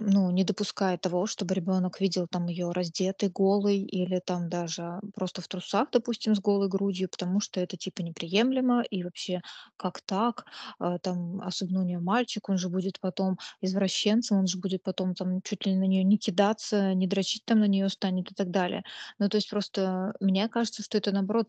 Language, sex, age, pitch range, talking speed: Russian, female, 20-39, 185-215 Hz, 195 wpm